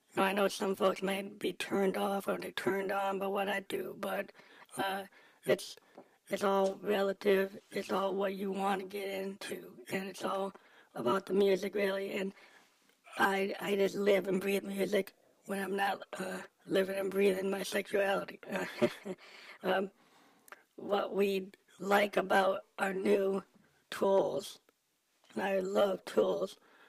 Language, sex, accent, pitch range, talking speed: English, female, American, 195-200 Hz, 150 wpm